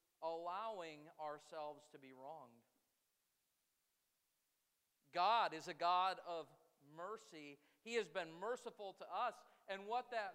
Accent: American